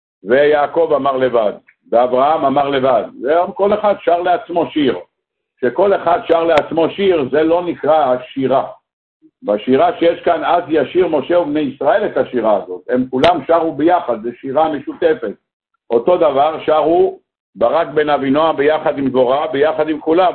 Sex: male